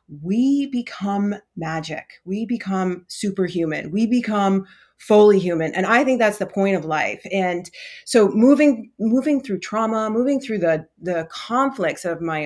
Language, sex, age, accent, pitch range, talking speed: English, female, 30-49, American, 165-210 Hz, 150 wpm